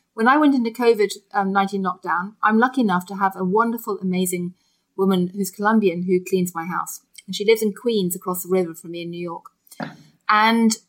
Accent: British